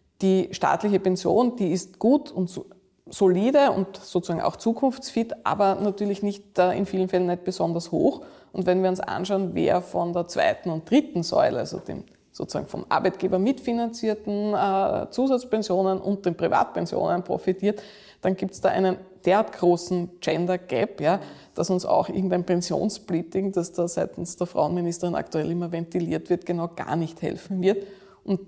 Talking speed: 160 wpm